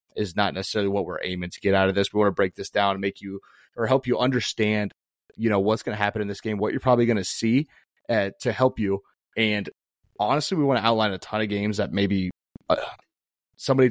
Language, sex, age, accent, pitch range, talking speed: English, male, 30-49, American, 100-120 Hz, 245 wpm